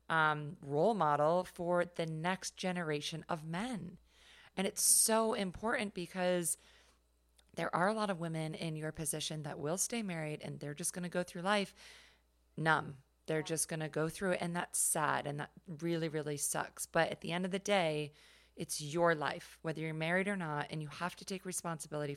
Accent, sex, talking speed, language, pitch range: American, female, 195 wpm, English, 155-185 Hz